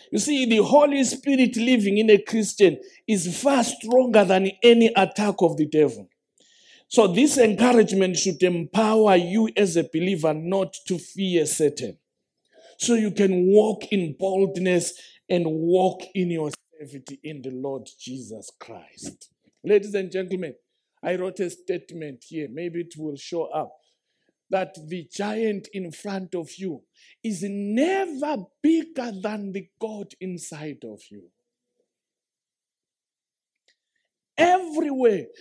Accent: South African